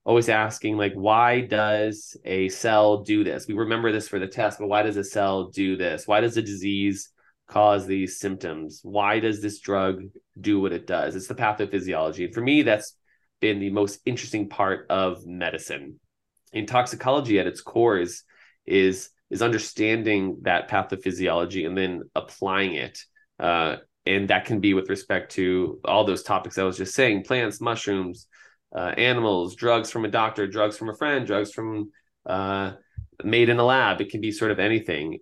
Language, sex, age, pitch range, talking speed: English, male, 20-39, 95-115 Hz, 180 wpm